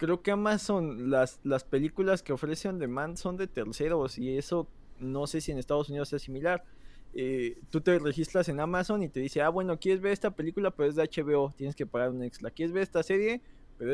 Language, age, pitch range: Spanish, 20-39, 130-160 Hz